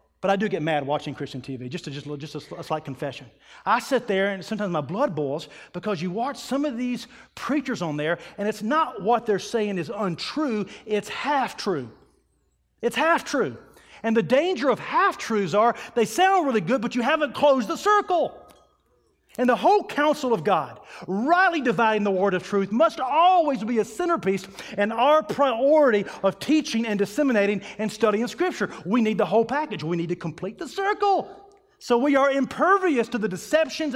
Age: 40-59